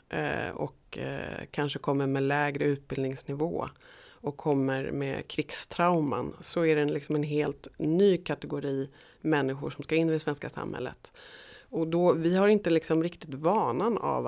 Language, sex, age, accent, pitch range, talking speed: Swedish, female, 30-49, native, 125-160 Hz, 130 wpm